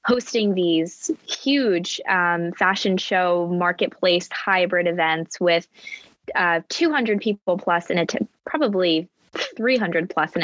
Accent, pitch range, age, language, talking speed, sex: American, 170-205 Hz, 20-39, English, 120 wpm, female